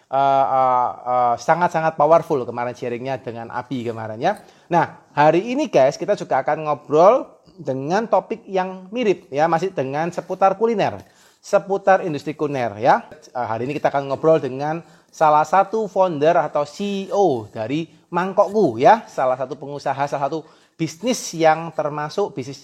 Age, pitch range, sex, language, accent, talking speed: 30-49, 130-175 Hz, male, Indonesian, native, 150 wpm